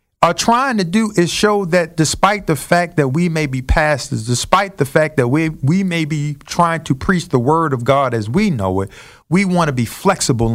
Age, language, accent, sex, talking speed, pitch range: 50-69, English, American, male, 220 wpm, 140-185 Hz